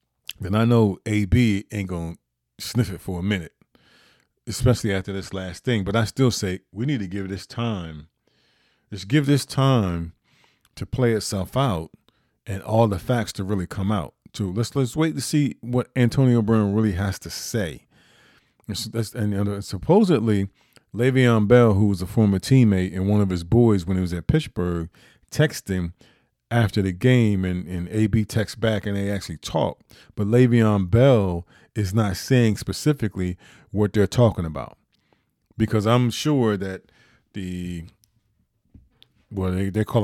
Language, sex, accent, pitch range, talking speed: English, male, American, 95-115 Hz, 170 wpm